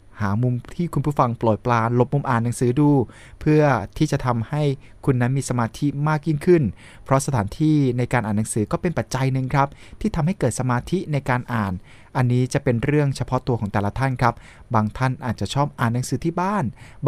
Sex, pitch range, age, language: male, 110-145 Hz, 20-39, Thai